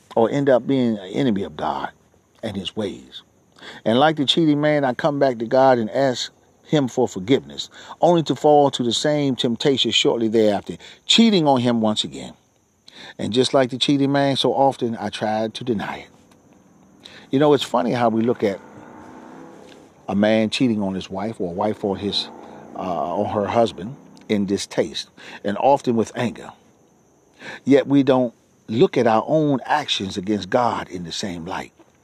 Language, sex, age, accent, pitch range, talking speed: English, male, 40-59, American, 105-145 Hz, 180 wpm